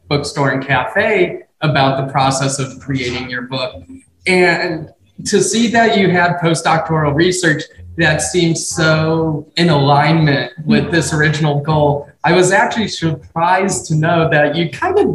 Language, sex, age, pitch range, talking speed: English, male, 20-39, 145-180 Hz, 145 wpm